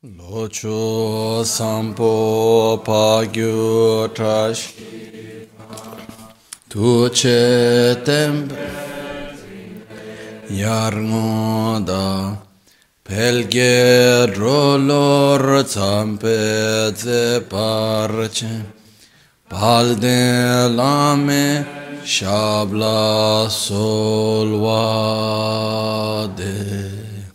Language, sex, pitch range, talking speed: Italian, male, 110-125 Hz, 35 wpm